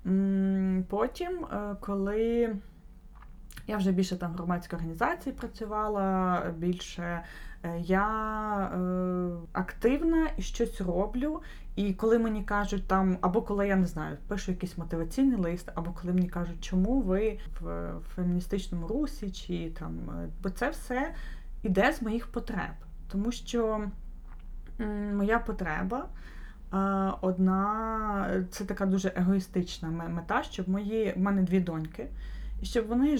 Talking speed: 125 wpm